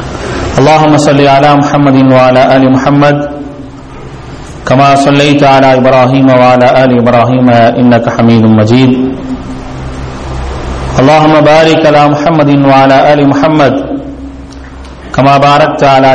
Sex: male